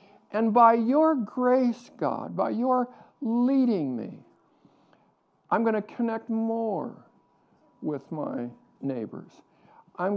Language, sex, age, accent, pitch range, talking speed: English, male, 60-79, American, 150-225 Hz, 100 wpm